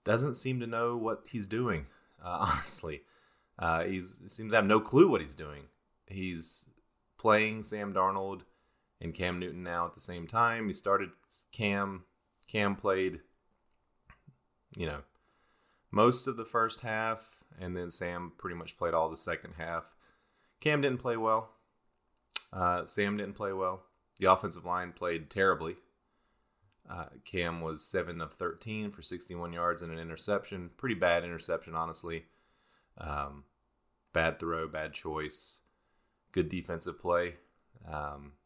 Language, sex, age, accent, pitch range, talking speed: English, male, 30-49, American, 85-110 Hz, 145 wpm